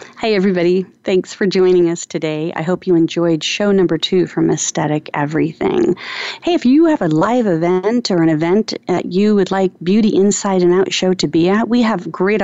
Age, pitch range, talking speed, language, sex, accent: 40-59, 165-210 Hz, 205 wpm, English, female, American